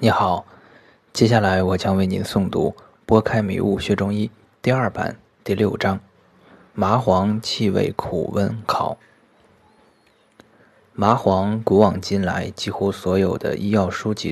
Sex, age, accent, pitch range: male, 20-39, native, 100-110 Hz